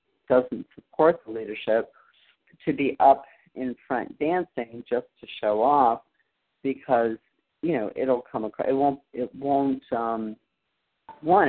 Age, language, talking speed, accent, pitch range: 50-69, English, 135 wpm, American, 125-180 Hz